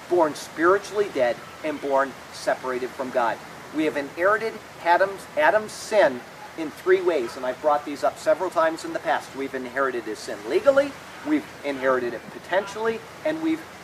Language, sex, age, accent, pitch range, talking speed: English, male, 40-59, American, 160-265 Hz, 165 wpm